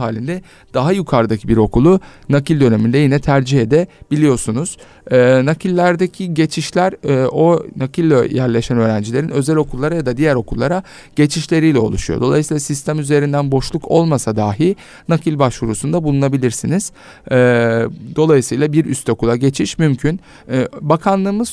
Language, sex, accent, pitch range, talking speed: Turkish, male, native, 120-165 Hz, 110 wpm